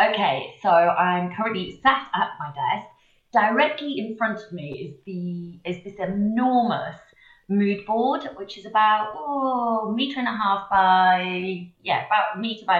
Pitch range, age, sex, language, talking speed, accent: 180-225 Hz, 30-49, female, English, 165 wpm, British